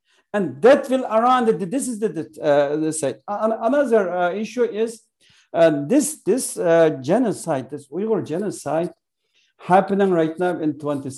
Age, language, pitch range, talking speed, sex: 50-69, English, 165-225 Hz, 160 wpm, male